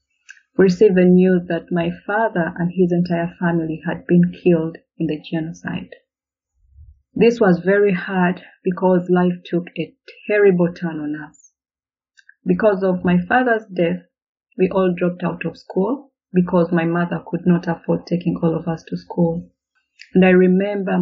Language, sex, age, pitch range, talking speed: English, female, 30-49, 170-205 Hz, 155 wpm